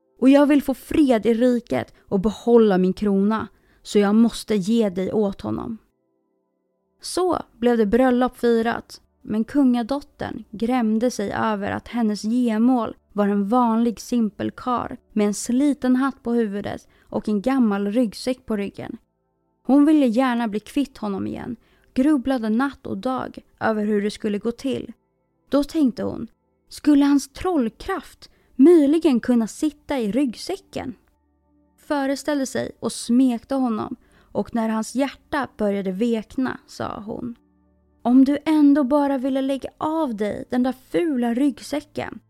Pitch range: 210-275 Hz